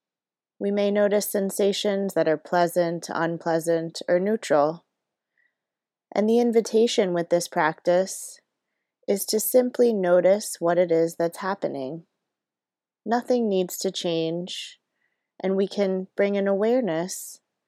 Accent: American